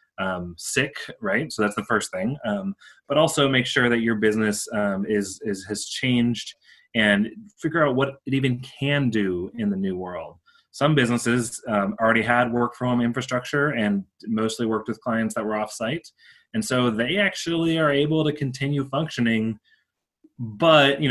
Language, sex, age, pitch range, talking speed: English, male, 30-49, 105-140 Hz, 175 wpm